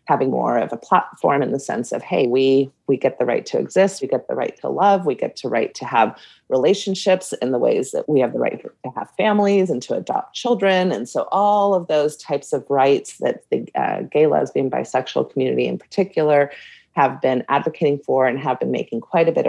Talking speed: 225 wpm